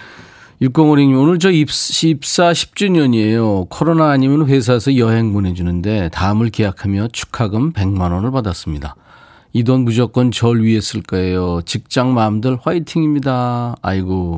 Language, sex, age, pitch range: Korean, male, 40-59, 100-145 Hz